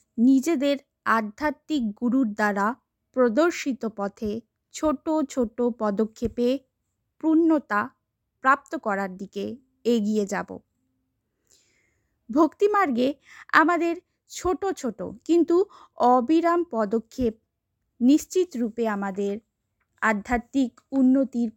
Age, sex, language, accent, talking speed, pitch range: 20-39, female, Bengali, native, 80 wpm, 205-285 Hz